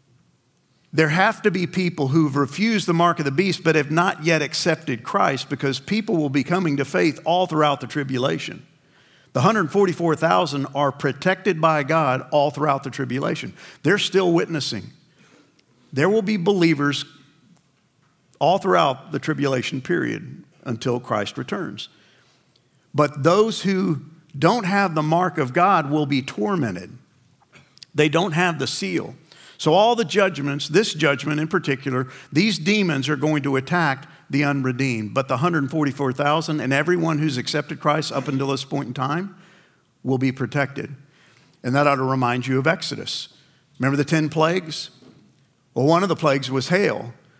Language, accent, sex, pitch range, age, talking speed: English, American, male, 135-170 Hz, 50-69, 155 wpm